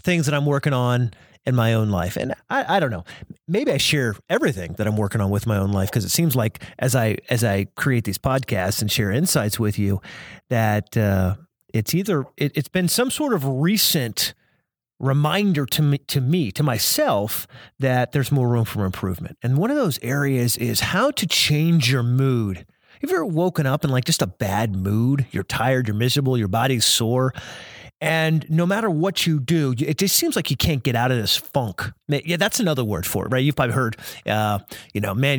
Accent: American